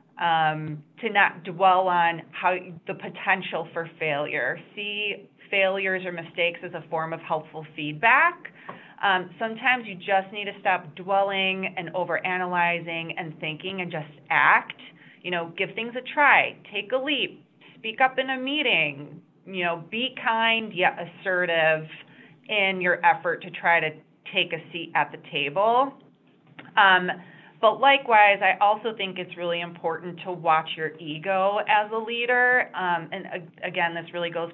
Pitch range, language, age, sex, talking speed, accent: 165-205 Hz, English, 30-49, female, 155 wpm, American